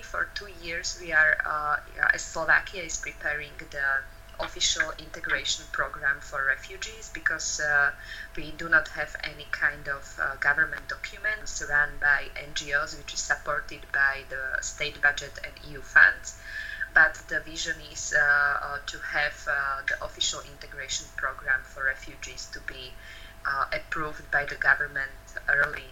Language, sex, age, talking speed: Hungarian, female, 20-39, 145 wpm